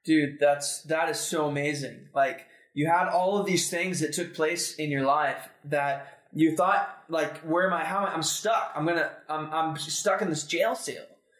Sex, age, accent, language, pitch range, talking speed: male, 20-39, American, English, 155-210 Hz, 210 wpm